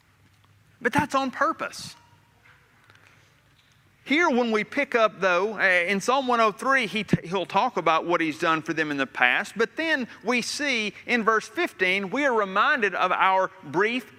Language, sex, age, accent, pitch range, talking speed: English, male, 40-59, American, 155-245 Hz, 155 wpm